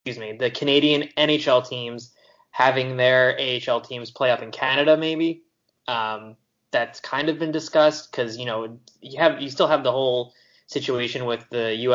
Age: 20-39